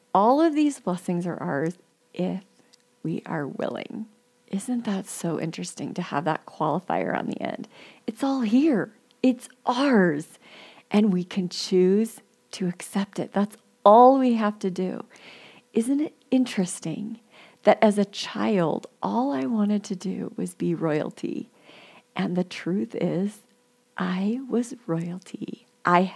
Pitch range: 180-240 Hz